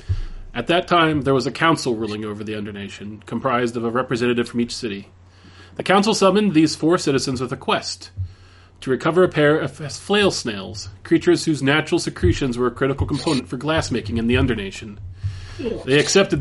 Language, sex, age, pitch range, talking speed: English, male, 30-49, 100-145 Hz, 180 wpm